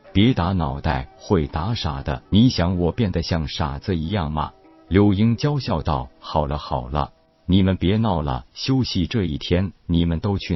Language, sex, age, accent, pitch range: Chinese, male, 50-69, native, 80-100 Hz